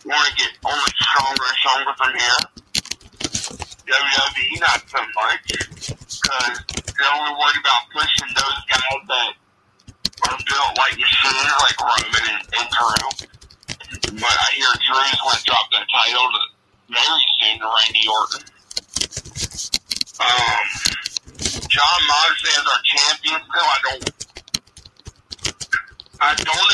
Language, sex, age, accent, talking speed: English, male, 50-69, American, 125 wpm